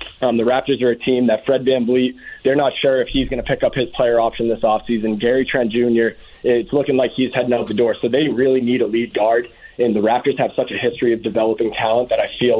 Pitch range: 115-135 Hz